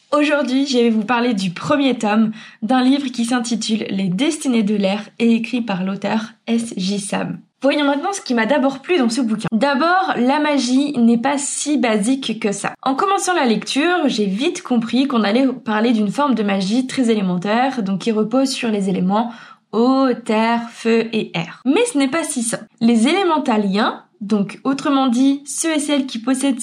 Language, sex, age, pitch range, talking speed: French, female, 20-39, 215-275 Hz, 190 wpm